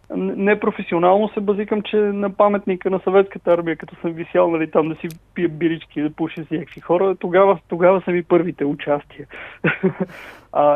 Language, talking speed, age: Bulgarian, 160 wpm, 30-49